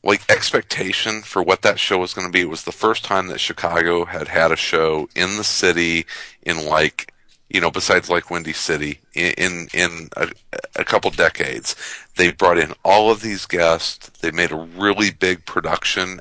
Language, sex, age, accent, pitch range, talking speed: English, male, 40-59, American, 85-100 Hz, 190 wpm